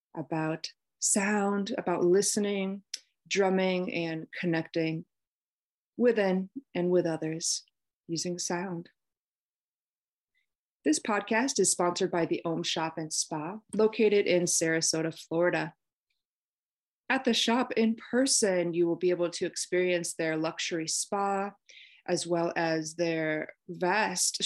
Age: 30-49